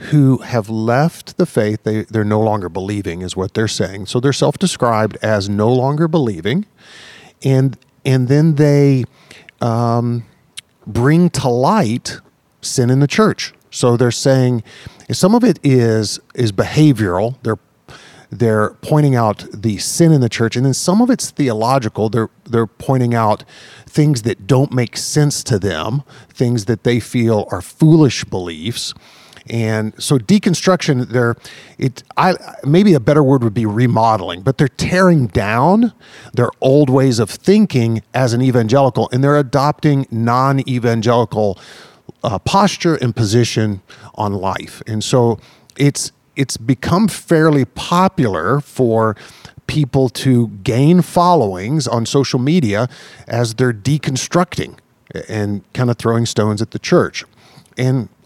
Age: 40-59